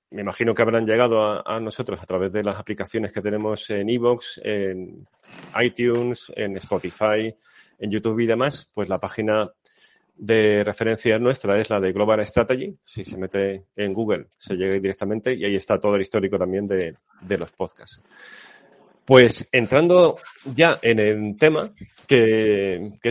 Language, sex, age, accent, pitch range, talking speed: Spanish, male, 30-49, Spanish, 105-125 Hz, 165 wpm